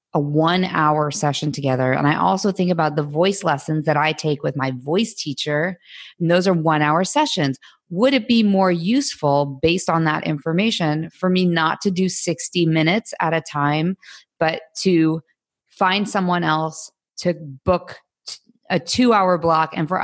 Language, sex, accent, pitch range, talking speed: English, female, American, 155-185 Hz, 165 wpm